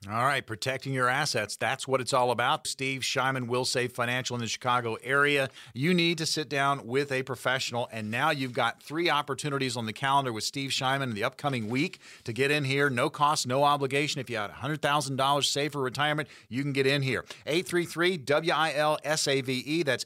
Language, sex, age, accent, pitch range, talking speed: English, male, 40-59, American, 130-165 Hz, 215 wpm